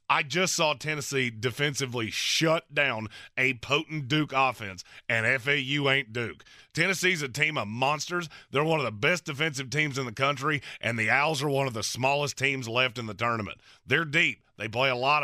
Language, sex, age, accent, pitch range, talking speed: English, male, 30-49, American, 120-155 Hz, 195 wpm